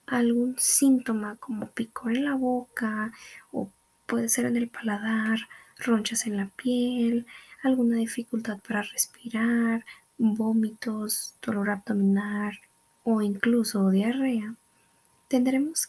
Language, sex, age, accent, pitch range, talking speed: Spanish, female, 20-39, Mexican, 220-265 Hz, 105 wpm